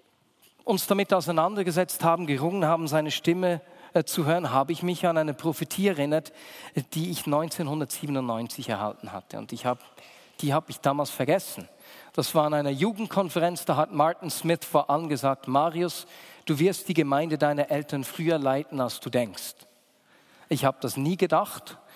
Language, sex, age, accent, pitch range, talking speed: German, male, 40-59, German, 145-195 Hz, 160 wpm